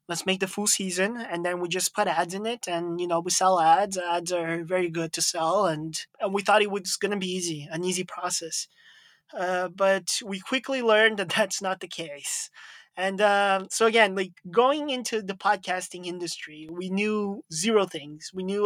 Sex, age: male, 20-39